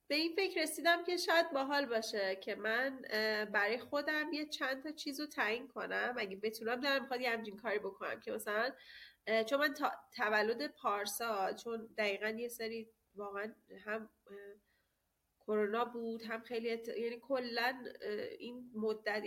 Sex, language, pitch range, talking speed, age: female, Persian, 200-260 Hz, 145 wpm, 30-49